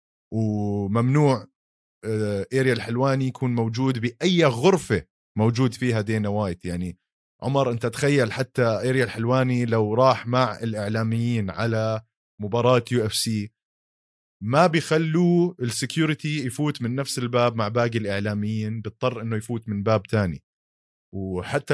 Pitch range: 105-125 Hz